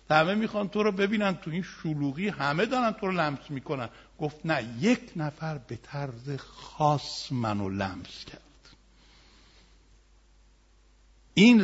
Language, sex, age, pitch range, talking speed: Persian, male, 60-79, 140-210 Hz, 130 wpm